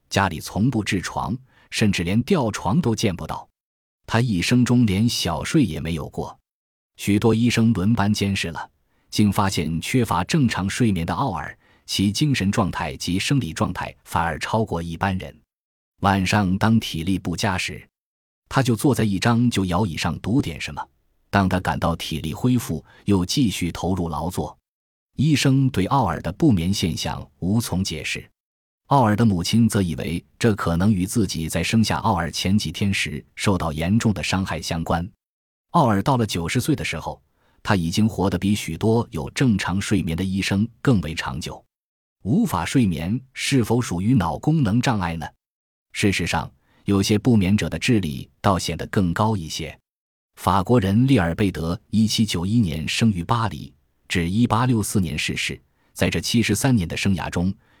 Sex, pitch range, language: male, 85-115 Hz, Chinese